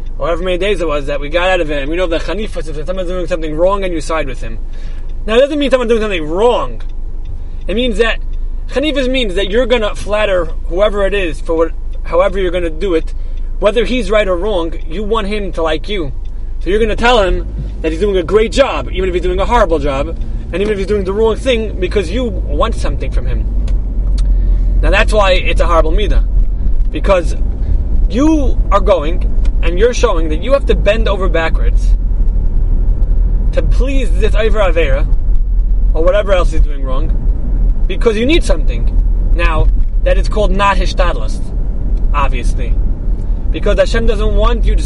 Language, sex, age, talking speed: English, male, 20-39, 200 wpm